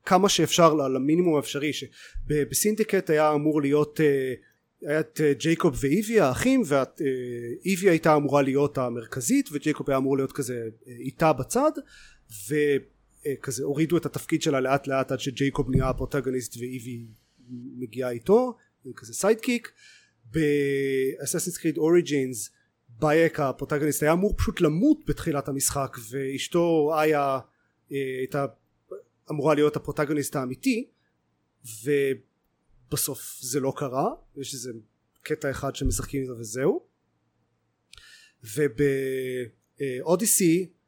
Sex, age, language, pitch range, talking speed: male, 30-49, Hebrew, 130-160 Hz, 105 wpm